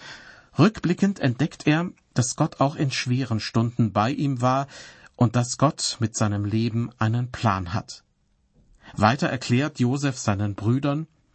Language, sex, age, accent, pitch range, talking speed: German, male, 50-69, German, 115-140 Hz, 135 wpm